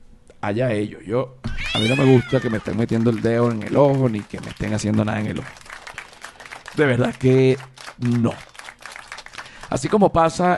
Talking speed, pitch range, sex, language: 185 wpm, 105-135 Hz, male, Spanish